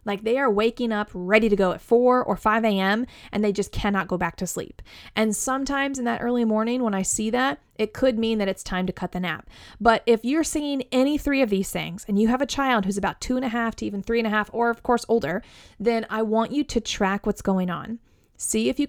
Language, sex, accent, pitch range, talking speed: English, female, American, 195-250 Hz, 265 wpm